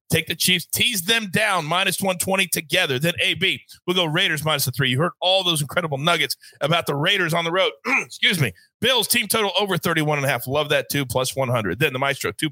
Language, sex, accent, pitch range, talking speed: English, male, American, 140-200 Hz, 230 wpm